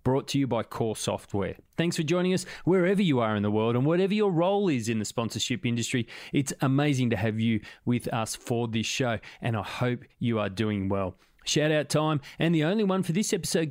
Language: English